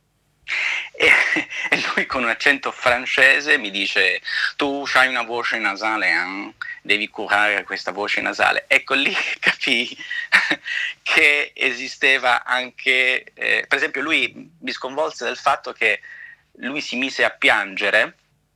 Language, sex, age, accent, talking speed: Italian, male, 30-49, native, 125 wpm